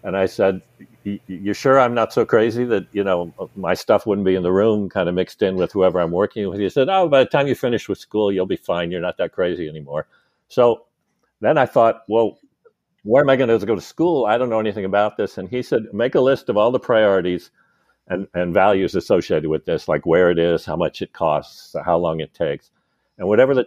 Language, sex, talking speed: English, male, 245 wpm